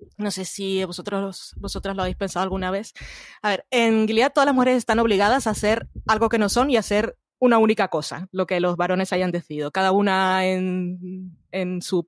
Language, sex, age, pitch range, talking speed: Spanish, female, 20-39, 180-220 Hz, 205 wpm